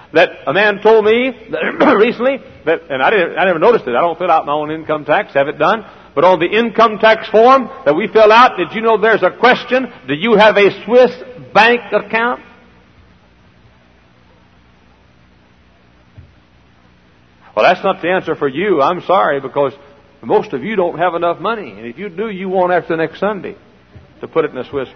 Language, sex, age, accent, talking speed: English, male, 60-79, American, 195 wpm